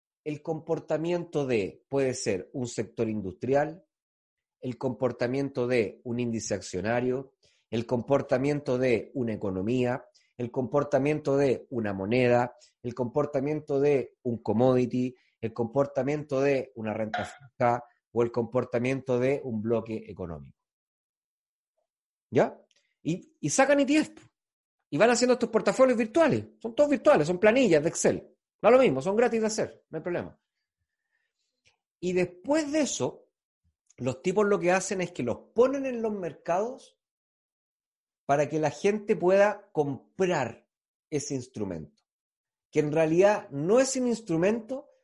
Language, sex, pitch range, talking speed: Spanish, male, 125-205 Hz, 135 wpm